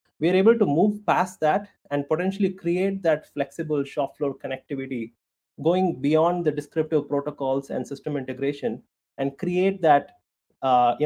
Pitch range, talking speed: 135-170 Hz, 150 wpm